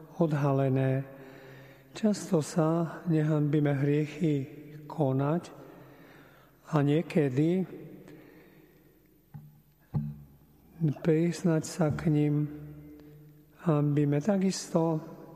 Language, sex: Slovak, male